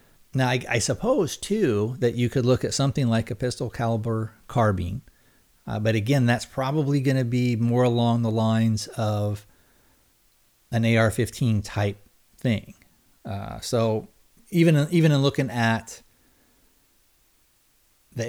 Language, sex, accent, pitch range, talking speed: English, male, American, 105-125 Hz, 135 wpm